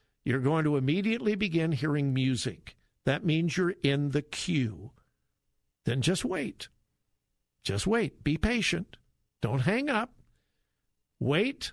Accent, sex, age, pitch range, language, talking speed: American, male, 60-79, 120-175 Hz, English, 125 wpm